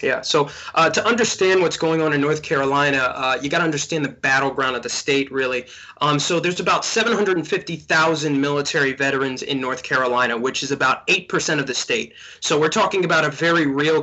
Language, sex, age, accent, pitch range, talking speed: English, male, 20-39, American, 140-165 Hz, 200 wpm